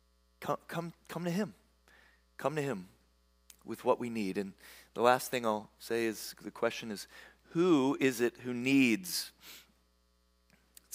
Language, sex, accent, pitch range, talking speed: English, male, American, 105-135 Hz, 155 wpm